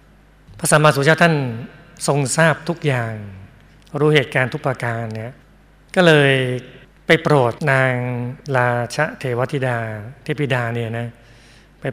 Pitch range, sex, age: 125-145 Hz, male, 60-79